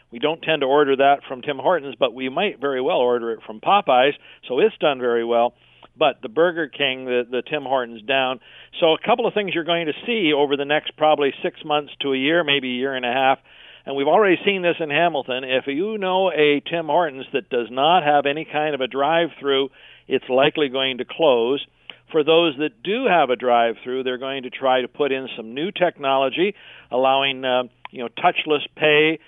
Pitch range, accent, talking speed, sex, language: 130-160 Hz, American, 220 wpm, male, English